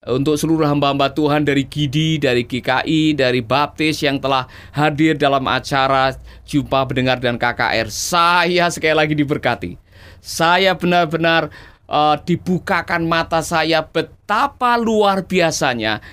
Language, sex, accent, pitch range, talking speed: Indonesian, male, native, 135-190 Hz, 120 wpm